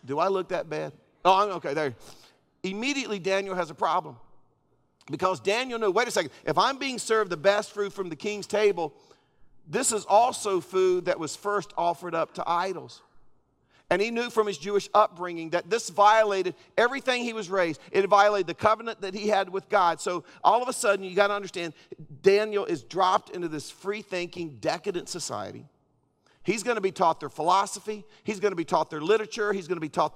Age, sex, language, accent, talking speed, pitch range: 50-69, male, English, American, 200 wpm, 160-210 Hz